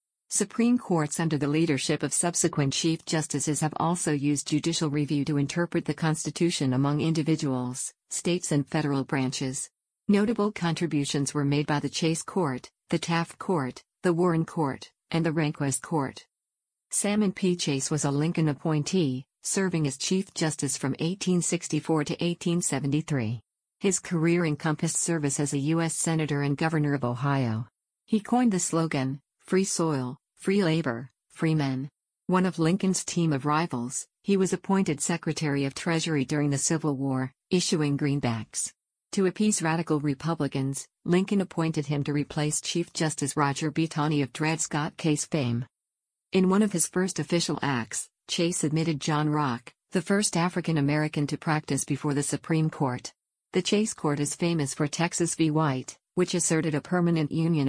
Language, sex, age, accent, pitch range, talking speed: English, female, 50-69, American, 145-170 Hz, 155 wpm